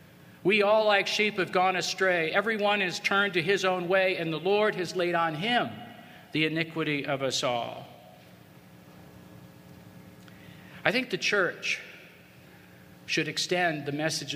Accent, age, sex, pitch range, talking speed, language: American, 50-69, male, 125-175 Hz, 140 wpm, English